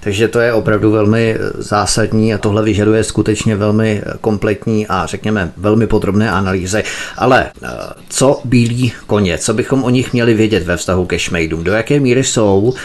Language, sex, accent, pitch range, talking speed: Czech, male, native, 100-120 Hz, 165 wpm